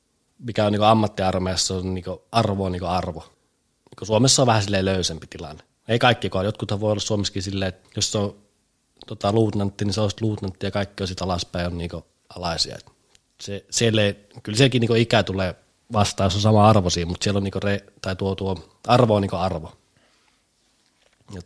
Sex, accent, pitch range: male, native, 90-115 Hz